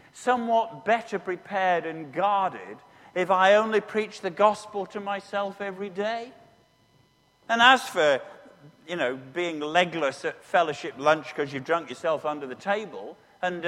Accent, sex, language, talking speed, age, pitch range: British, male, English, 145 wpm, 50-69, 175-250 Hz